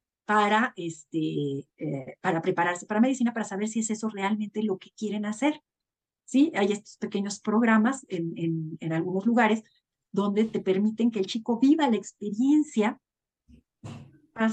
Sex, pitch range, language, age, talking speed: female, 175-230 Hz, Spanish, 40-59, 155 wpm